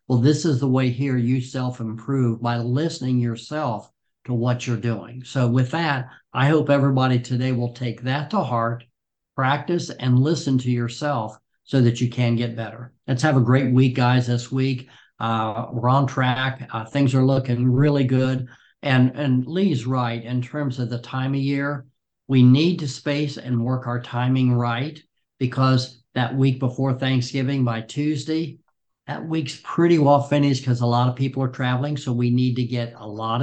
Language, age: English, 60-79